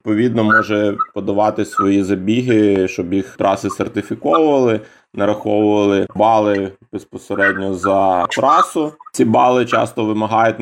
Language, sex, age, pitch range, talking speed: Ukrainian, male, 20-39, 100-110 Hz, 100 wpm